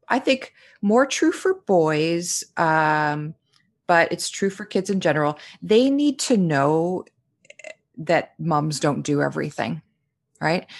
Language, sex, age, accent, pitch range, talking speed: English, female, 30-49, American, 150-200 Hz, 135 wpm